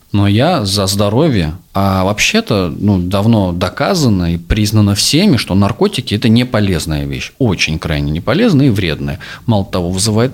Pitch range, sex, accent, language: 100-140 Hz, male, native, Russian